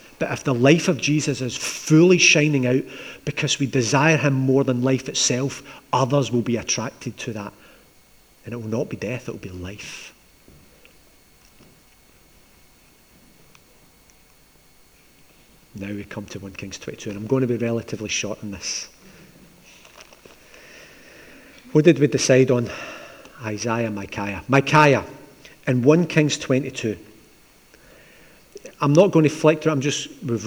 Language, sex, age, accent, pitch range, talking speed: English, male, 40-59, British, 120-145 Hz, 140 wpm